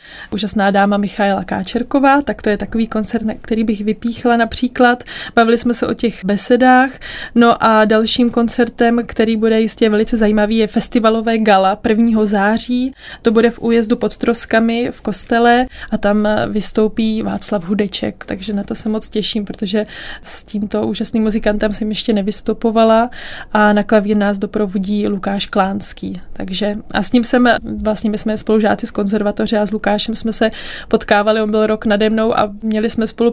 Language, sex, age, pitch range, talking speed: Czech, female, 20-39, 210-230 Hz, 170 wpm